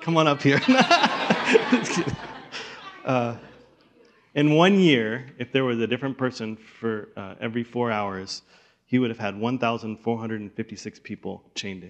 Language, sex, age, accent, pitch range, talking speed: English, male, 30-49, American, 105-160 Hz, 135 wpm